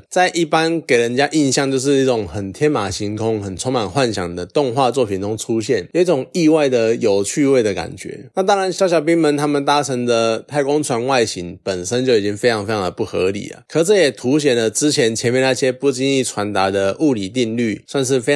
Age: 20-39